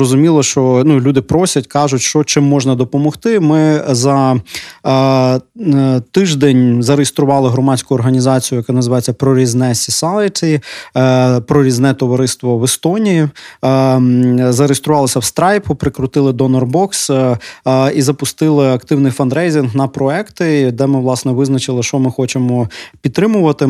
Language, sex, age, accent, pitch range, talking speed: Ukrainian, male, 20-39, native, 125-145 Hz, 125 wpm